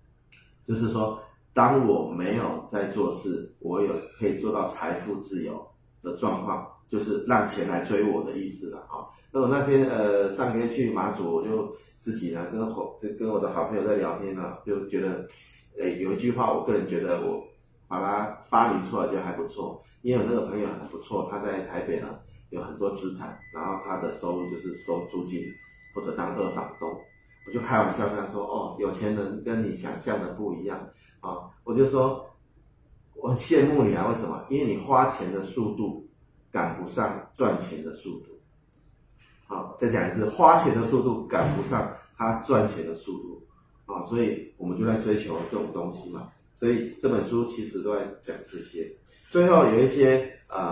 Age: 30-49